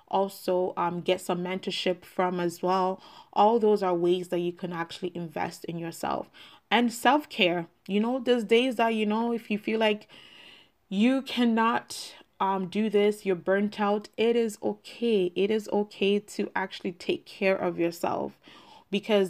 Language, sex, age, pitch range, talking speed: English, female, 20-39, 180-215 Hz, 165 wpm